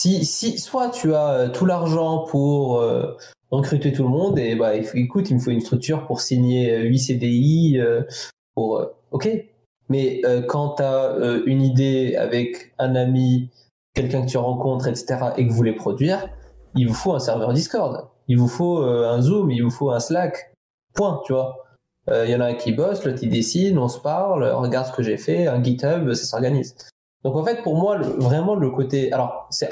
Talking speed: 215 wpm